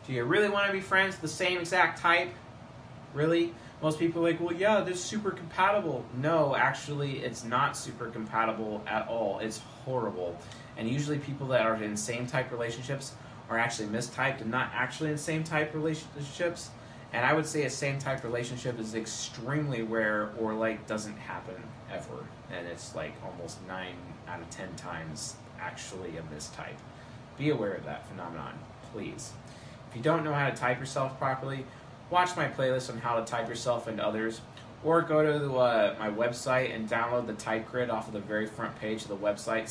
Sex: male